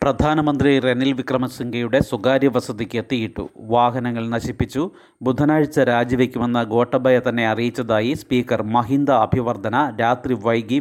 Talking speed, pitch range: 100 wpm, 115-130 Hz